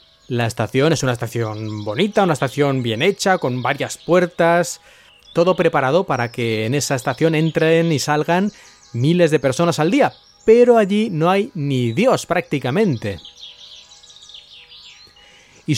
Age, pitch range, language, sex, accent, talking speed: 30-49, 130-170 Hz, Spanish, male, Spanish, 135 wpm